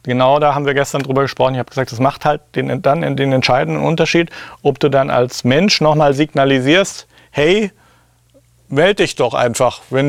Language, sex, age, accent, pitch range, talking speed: German, male, 40-59, German, 125-150 Hz, 185 wpm